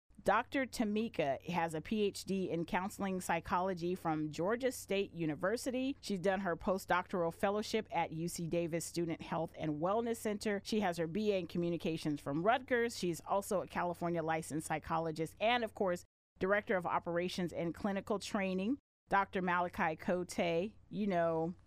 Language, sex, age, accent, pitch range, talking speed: English, female, 30-49, American, 170-210 Hz, 145 wpm